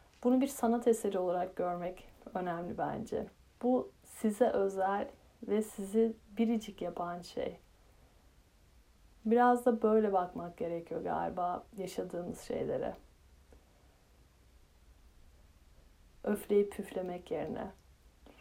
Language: Turkish